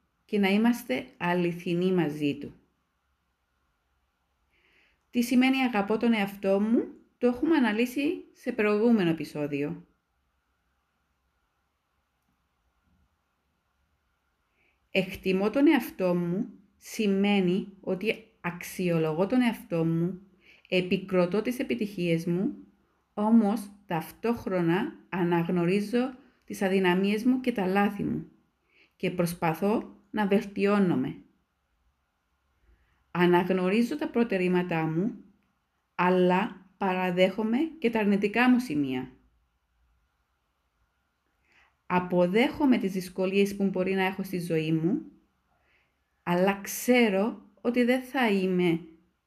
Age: 30-49